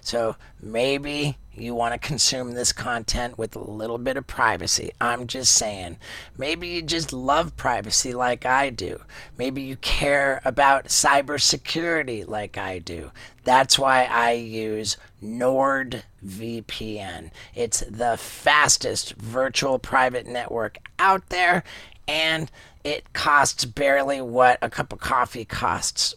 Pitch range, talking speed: 110-140 Hz, 130 wpm